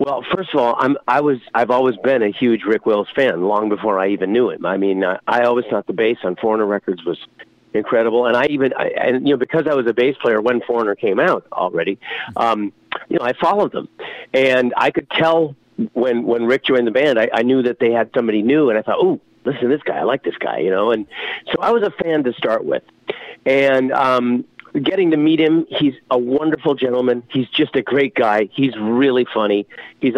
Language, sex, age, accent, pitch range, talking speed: English, male, 50-69, American, 110-145 Hz, 230 wpm